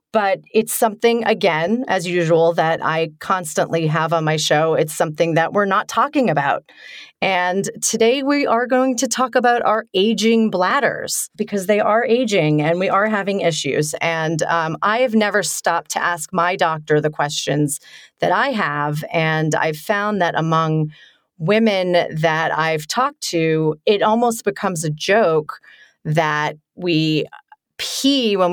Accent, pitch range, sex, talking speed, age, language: American, 160-210 Hz, female, 155 wpm, 30-49, English